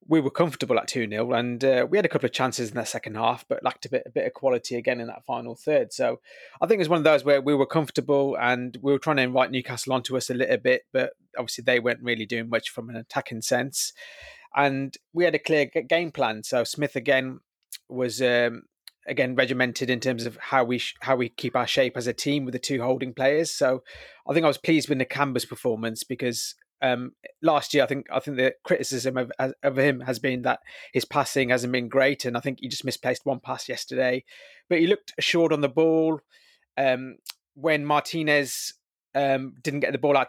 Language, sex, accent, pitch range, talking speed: English, male, British, 125-145 Hz, 230 wpm